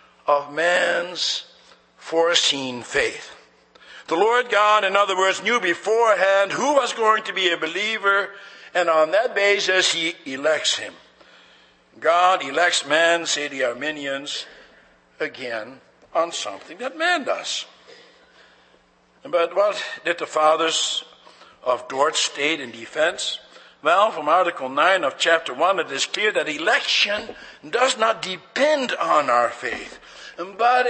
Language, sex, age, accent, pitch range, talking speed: English, male, 60-79, American, 185-255 Hz, 130 wpm